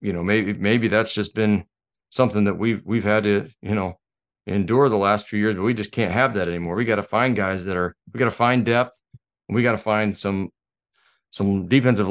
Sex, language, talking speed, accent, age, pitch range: male, English, 235 wpm, American, 40-59, 100-115 Hz